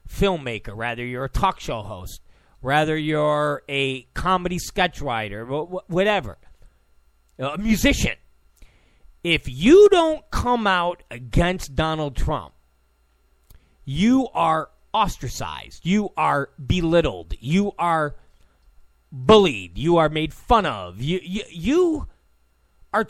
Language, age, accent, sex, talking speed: English, 40-59, American, male, 110 wpm